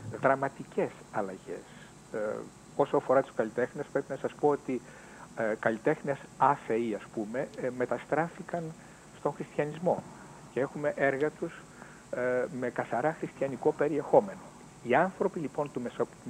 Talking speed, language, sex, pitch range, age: 135 wpm, Greek, male, 115-155 Hz, 60-79